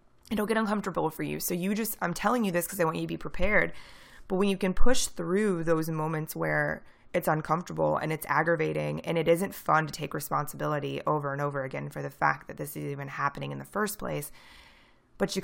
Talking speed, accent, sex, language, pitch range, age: 225 wpm, American, female, English, 140-185 Hz, 20-39